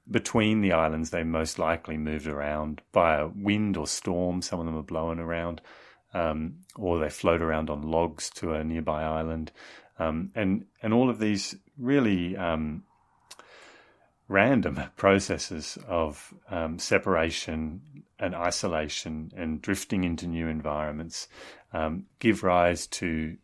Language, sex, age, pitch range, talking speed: English, male, 30-49, 80-100 Hz, 140 wpm